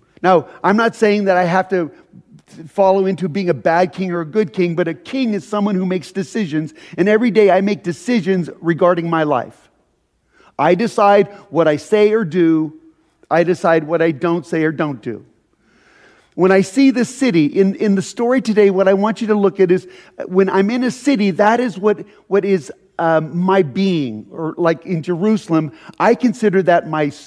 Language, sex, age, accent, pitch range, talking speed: English, male, 40-59, American, 175-215 Hz, 200 wpm